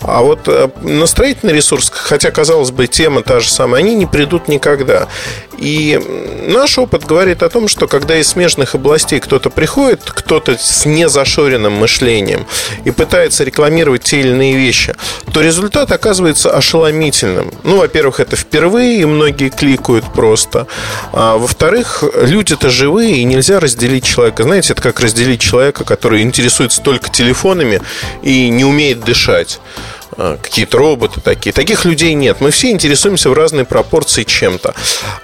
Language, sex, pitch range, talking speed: Russian, male, 135-225 Hz, 145 wpm